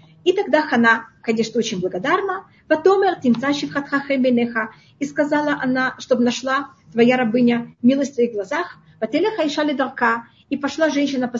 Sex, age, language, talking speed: female, 30-49, Russian, 135 wpm